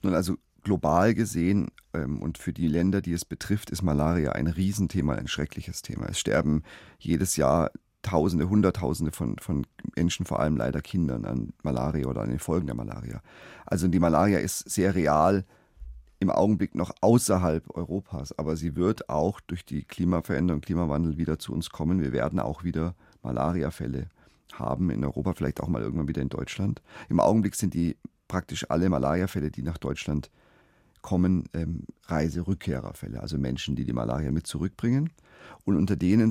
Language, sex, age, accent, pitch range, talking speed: German, male, 40-59, German, 80-95 Hz, 165 wpm